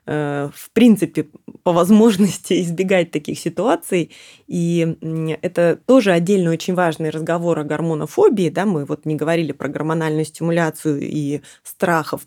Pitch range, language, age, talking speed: 155-190 Hz, Russian, 20-39, 125 wpm